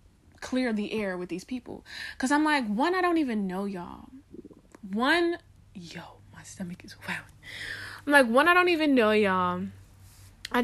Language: English